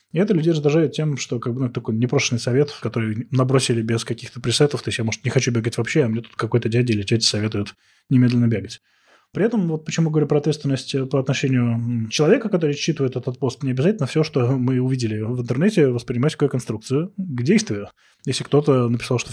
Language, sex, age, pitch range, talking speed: Russian, male, 20-39, 120-150 Hz, 210 wpm